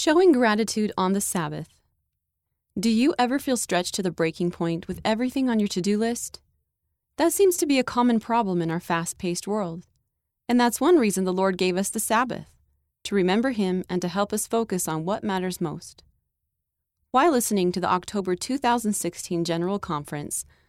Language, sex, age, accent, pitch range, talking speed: English, female, 30-49, American, 170-230 Hz, 185 wpm